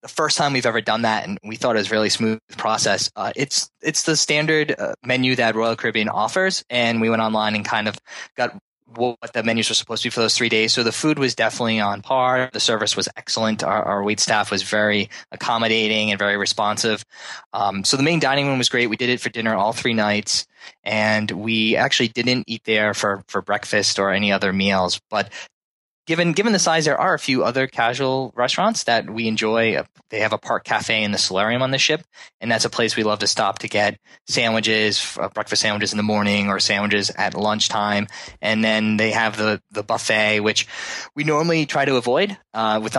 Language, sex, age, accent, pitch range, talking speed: English, male, 20-39, American, 105-125 Hz, 220 wpm